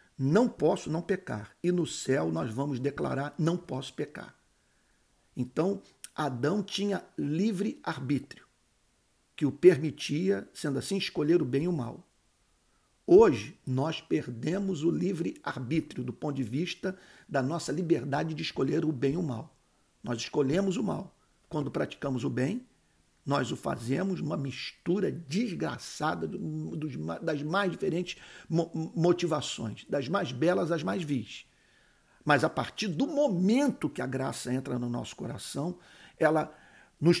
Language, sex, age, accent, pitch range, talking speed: Portuguese, male, 50-69, Brazilian, 135-180 Hz, 140 wpm